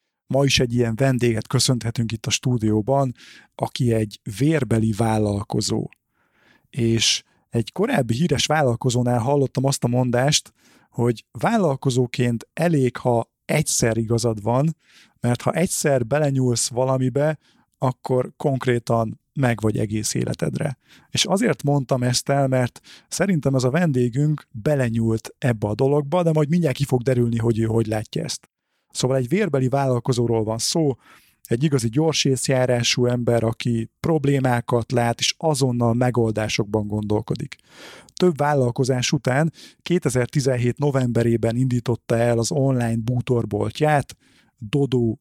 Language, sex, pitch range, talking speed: Hungarian, male, 115-140 Hz, 125 wpm